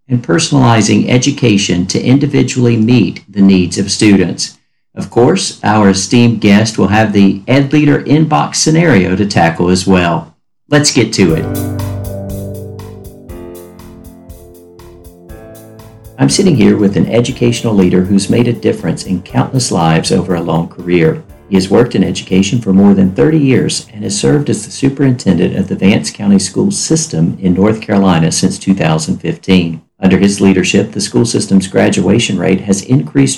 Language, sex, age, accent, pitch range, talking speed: English, male, 50-69, American, 90-120 Hz, 155 wpm